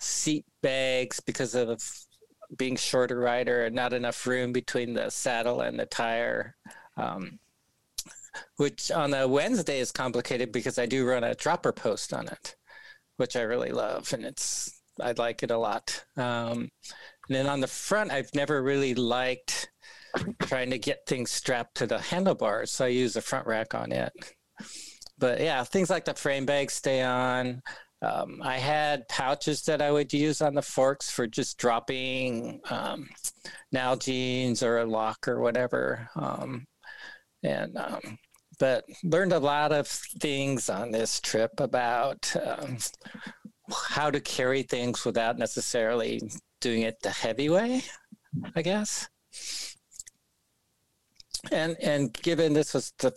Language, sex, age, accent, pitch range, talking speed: English, male, 40-59, American, 120-145 Hz, 150 wpm